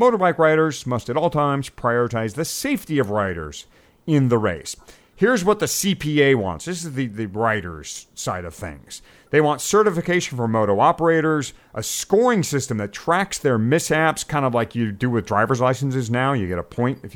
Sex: male